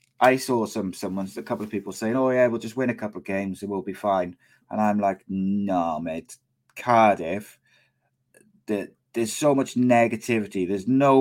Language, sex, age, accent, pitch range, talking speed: English, male, 30-49, British, 95-120 Hz, 180 wpm